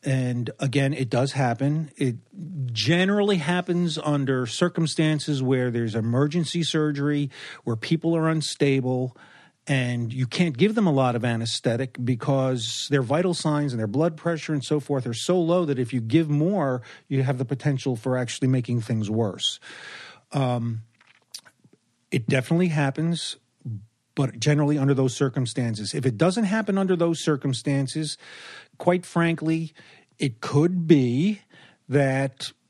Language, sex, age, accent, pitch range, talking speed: English, male, 40-59, American, 130-165 Hz, 140 wpm